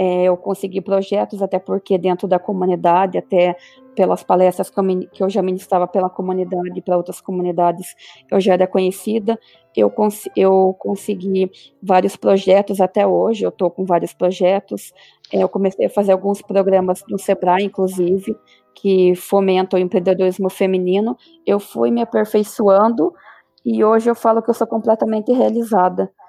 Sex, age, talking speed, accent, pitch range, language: female, 20-39, 145 wpm, Brazilian, 180-205 Hz, Portuguese